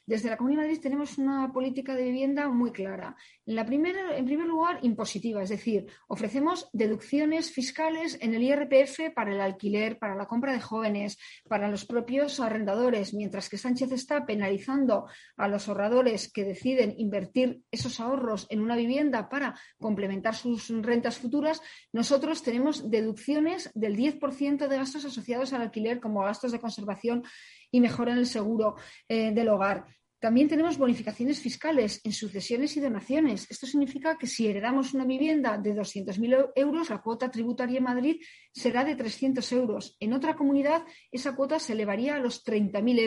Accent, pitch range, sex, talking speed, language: Spanish, 215-275 Hz, female, 165 wpm, Spanish